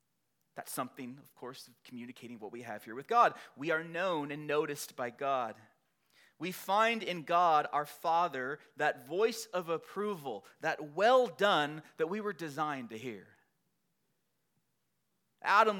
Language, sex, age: English, male, 30-49